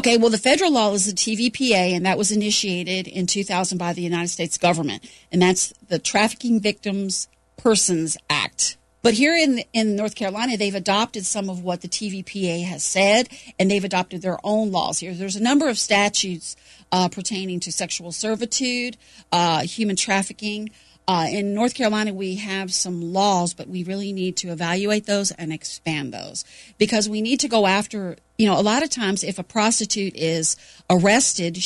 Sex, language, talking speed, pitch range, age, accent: female, English, 180 wpm, 180-220 Hz, 40-59, American